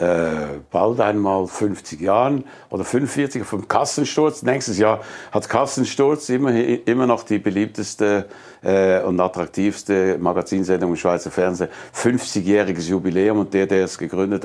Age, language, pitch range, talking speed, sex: 60-79, German, 100-120 Hz, 135 wpm, male